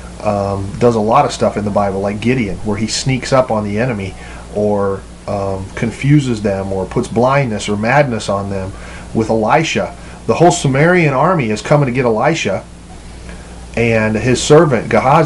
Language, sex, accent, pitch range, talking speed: English, male, American, 105-150 Hz, 175 wpm